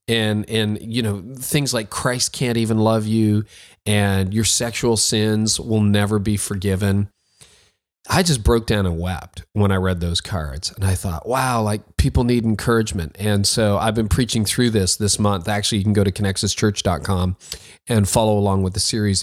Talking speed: 185 wpm